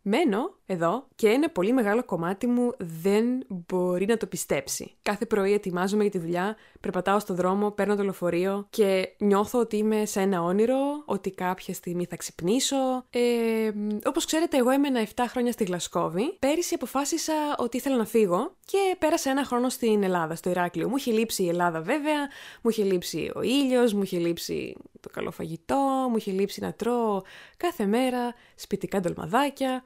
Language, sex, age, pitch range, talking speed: Greek, female, 20-39, 190-255 Hz, 170 wpm